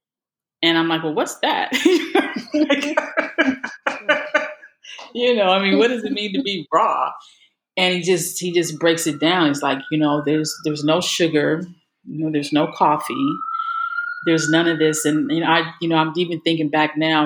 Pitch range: 155-215 Hz